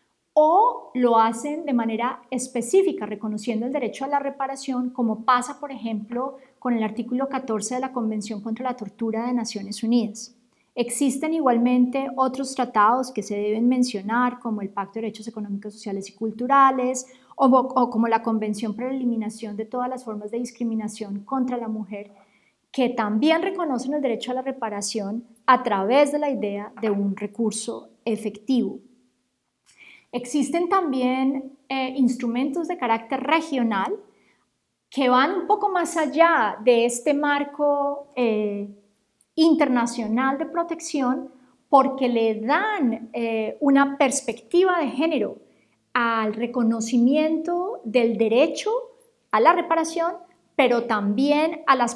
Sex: female